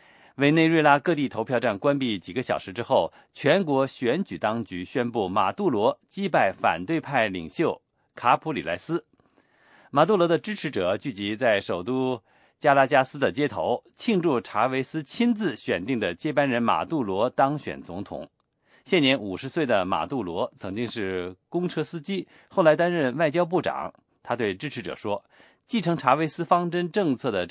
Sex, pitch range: male, 120-170 Hz